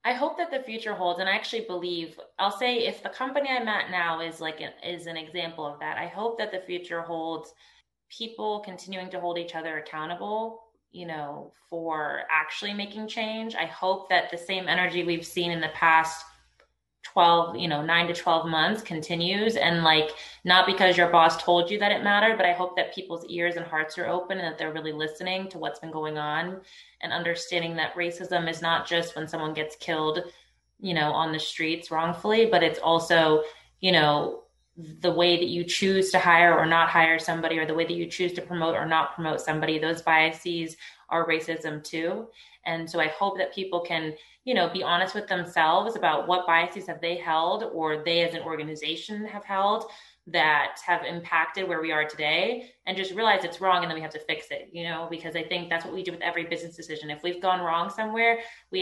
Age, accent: 20-39, American